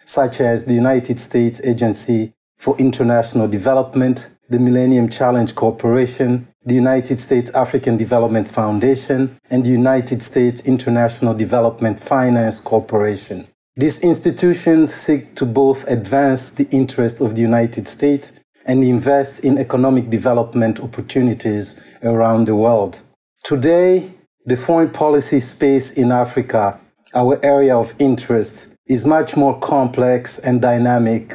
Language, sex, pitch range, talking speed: English, male, 115-135 Hz, 125 wpm